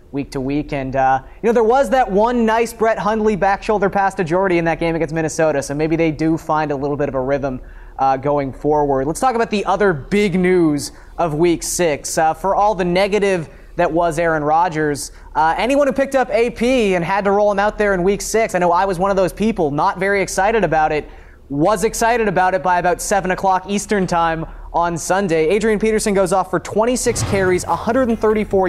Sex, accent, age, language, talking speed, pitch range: male, American, 20-39, English, 220 wpm, 160-205 Hz